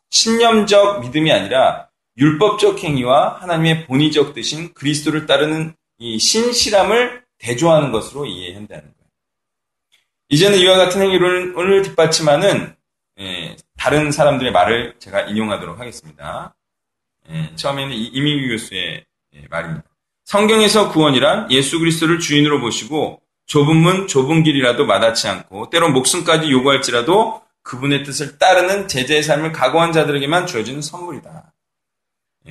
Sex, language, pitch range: male, Korean, 135-170 Hz